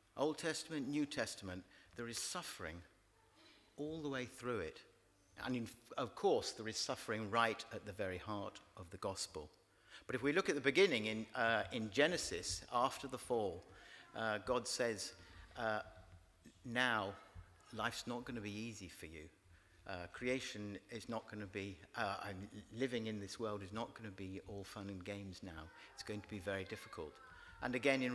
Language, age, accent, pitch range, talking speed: English, 50-69, British, 95-120 Hz, 185 wpm